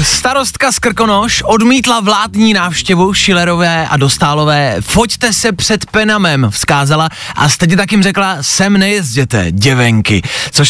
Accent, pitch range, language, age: native, 125-190 Hz, Czech, 20-39